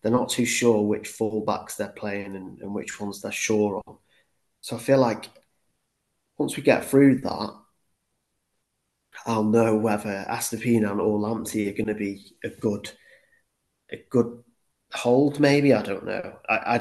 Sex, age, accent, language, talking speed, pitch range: male, 20-39, British, English, 160 wpm, 100-115 Hz